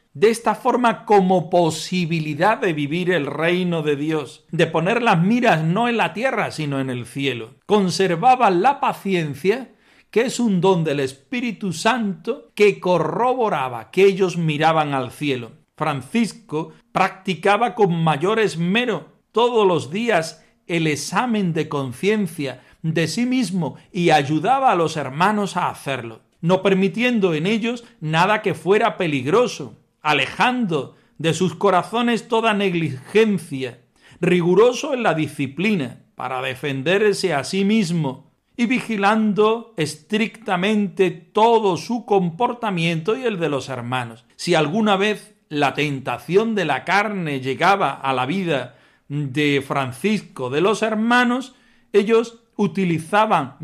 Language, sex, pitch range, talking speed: Spanish, male, 155-220 Hz, 130 wpm